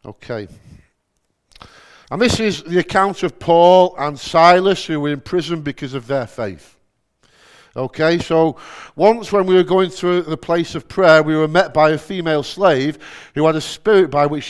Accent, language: British, English